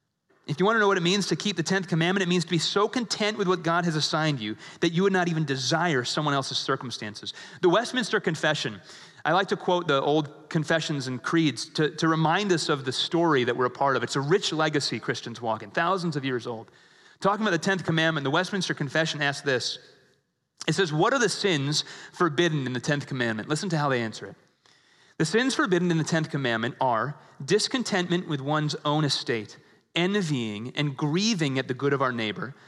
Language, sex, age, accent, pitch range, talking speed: English, male, 30-49, American, 135-180 Hz, 215 wpm